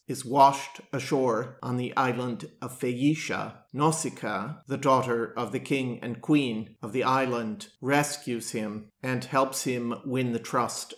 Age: 50-69